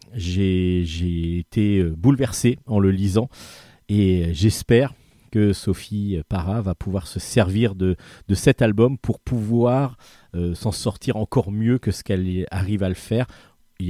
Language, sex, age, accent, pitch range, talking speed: French, male, 40-59, French, 95-115 Hz, 150 wpm